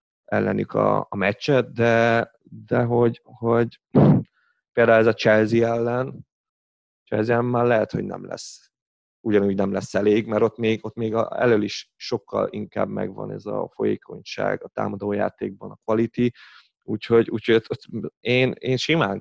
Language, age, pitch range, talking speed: Hungarian, 30-49, 100-120 Hz, 145 wpm